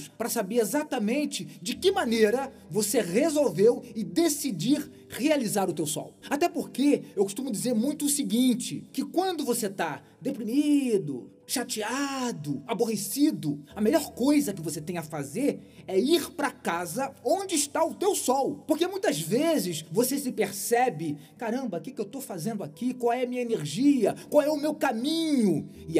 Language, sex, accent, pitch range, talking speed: Portuguese, male, Brazilian, 190-275 Hz, 160 wpm